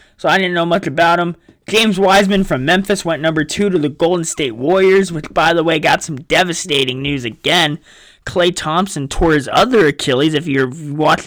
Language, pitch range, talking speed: English, 140-180 Hz, 195 wpm